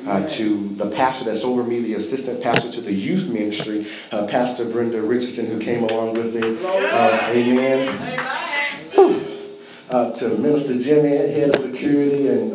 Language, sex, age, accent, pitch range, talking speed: English, male, 40-59, American, 95-120 Hz, 160 wpm